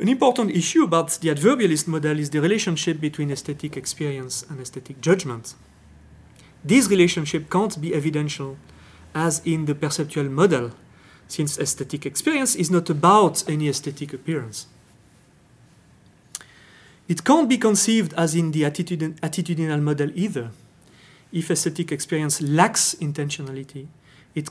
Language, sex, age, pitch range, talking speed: English, male, 40-59, 140-175 Hz, 125 wpm